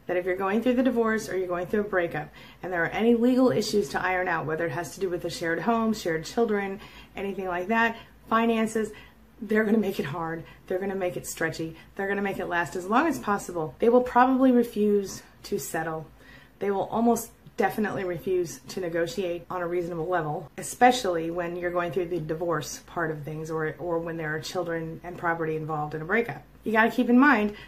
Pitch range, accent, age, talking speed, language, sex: 170-225 Hz, American, 30-49, 225 wpm, English, female